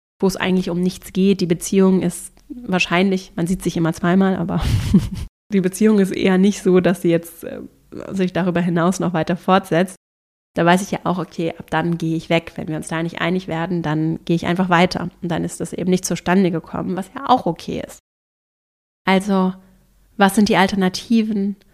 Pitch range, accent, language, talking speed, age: 175-195 Hz, German, German, 200 wpm, 30-49